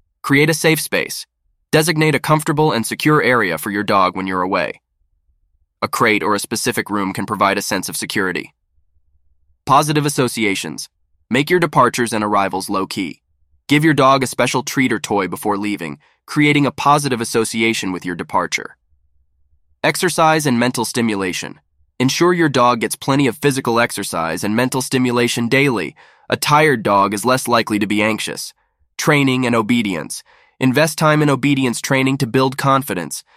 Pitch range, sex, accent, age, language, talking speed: 100-145 Hz, male, American, 20-39, English, 160 wpm